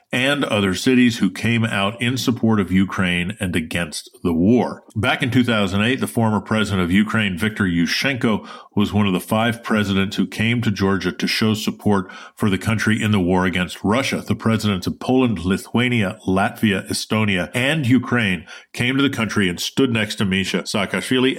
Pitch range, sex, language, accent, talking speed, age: 95-115 Hz, male, English, American, 180 wpm, 50-69